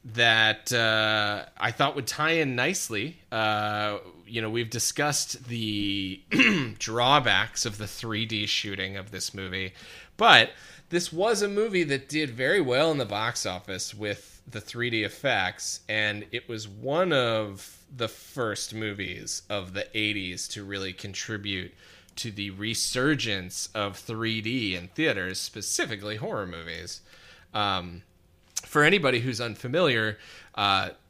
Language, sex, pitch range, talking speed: English, male, 95-120 Hz, 135 wpm